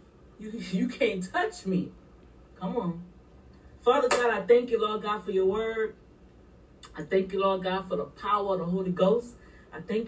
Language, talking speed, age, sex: English, 185 wpm, 40-59, female